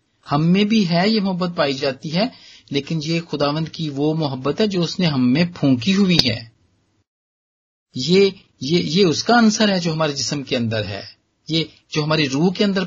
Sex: male